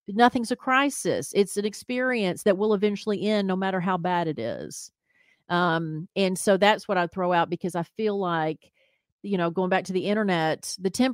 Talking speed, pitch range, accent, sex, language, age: 200 wpm, 175-215 Hz, American, female, English, 40-59